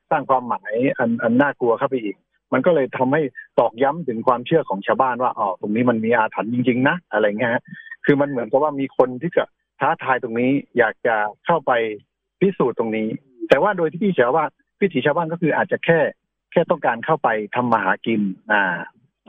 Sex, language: male, Thai